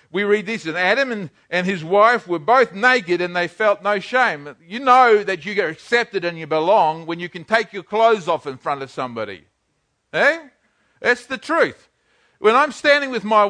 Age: 50-69